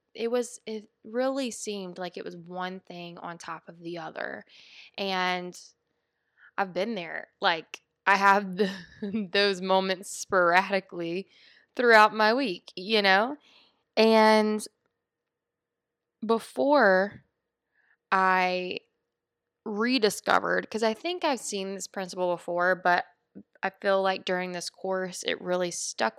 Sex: female